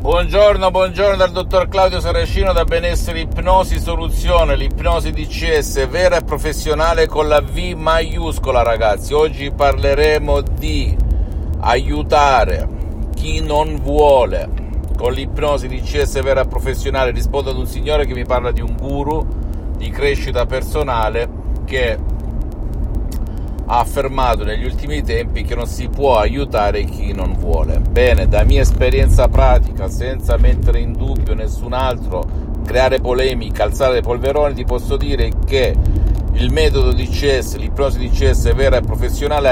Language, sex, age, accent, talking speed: Italian, male, 50-69, native, 140 wpm